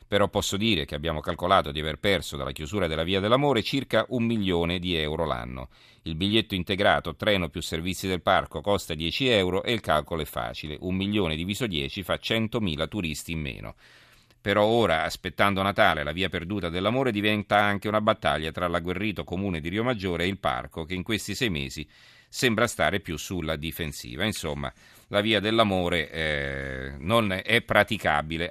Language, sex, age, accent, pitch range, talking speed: Italian, male, 40-59, native, 85-105 Hz, 175 wpm